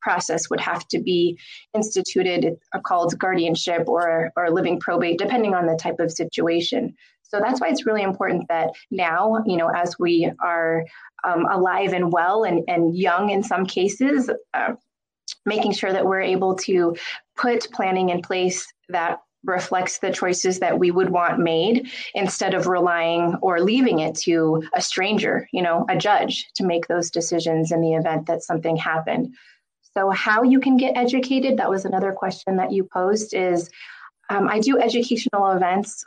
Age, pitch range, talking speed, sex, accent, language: 20-39, 170-205 Hz, 175 wpm, female, American, English